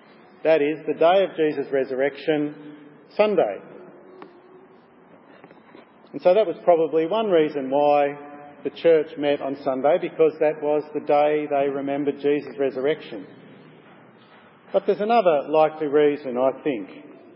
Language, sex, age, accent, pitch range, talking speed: English, male, 50-69, Australian, 150-205 Hz, 130 wpm